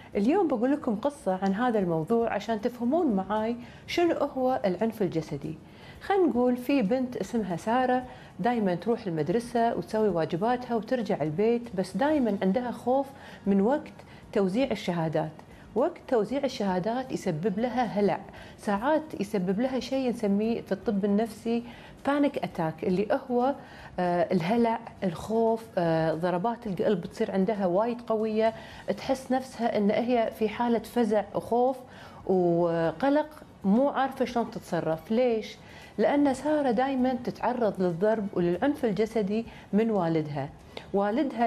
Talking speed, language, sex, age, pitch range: 125 wpm, Arabic, female, 40-59, 195-255 Hz